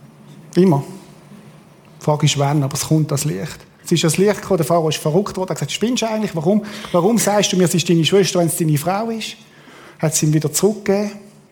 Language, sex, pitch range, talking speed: German, male, 165-215 Hz, 230 wpm